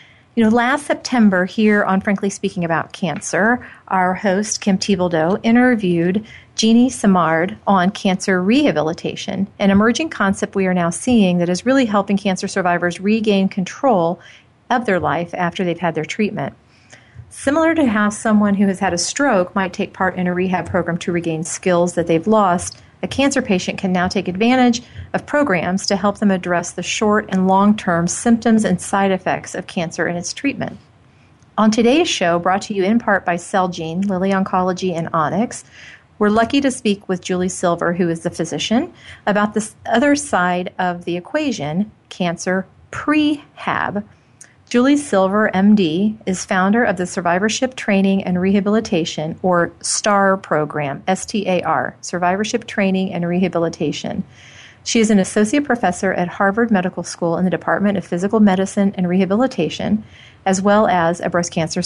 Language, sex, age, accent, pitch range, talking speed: English, female, 40-59, American, 175-215 Hz, 165 wpm